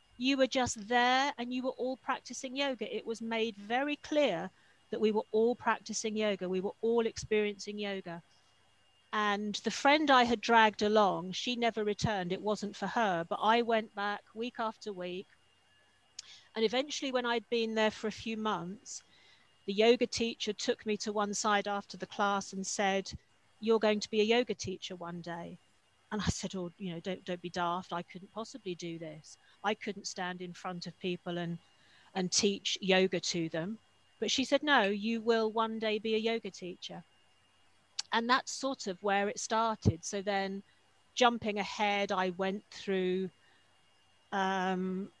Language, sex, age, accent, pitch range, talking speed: English, female, 40-59, British, 185-225 Hz, 180 wpm